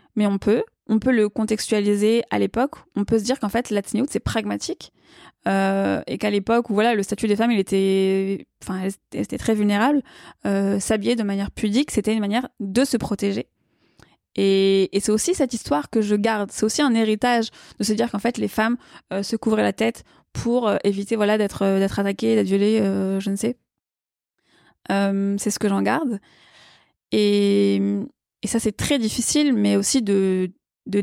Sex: female